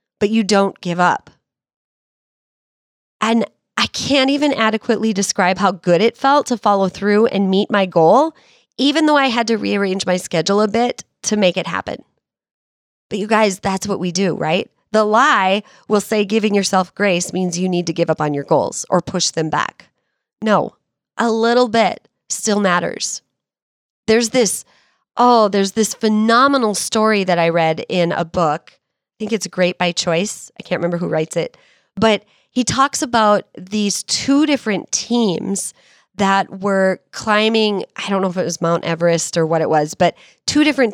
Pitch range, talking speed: 180-220 Hz, 175 wpm